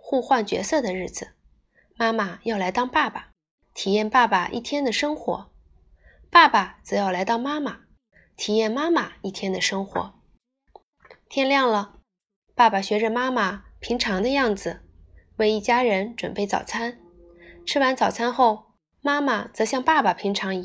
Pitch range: 195-250 Hz